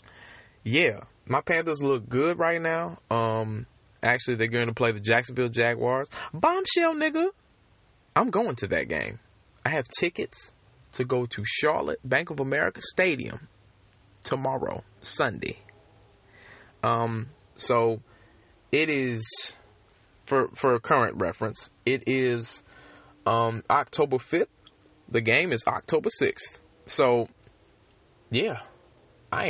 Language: English